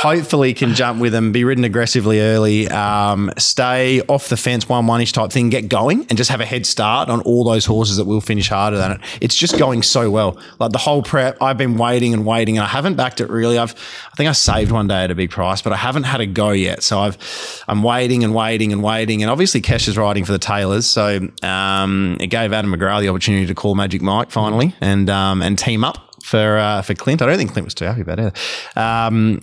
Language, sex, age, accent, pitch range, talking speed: English, male, 20-39, Australian, 105-125 Hz, 250 wpm